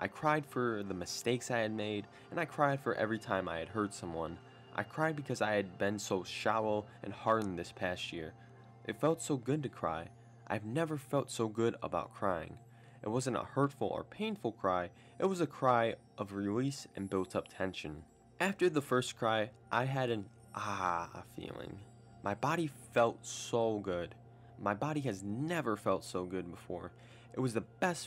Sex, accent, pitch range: male, American, 100-130 Hz